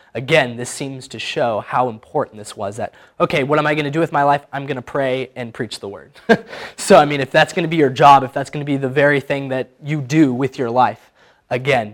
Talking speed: 265 wpm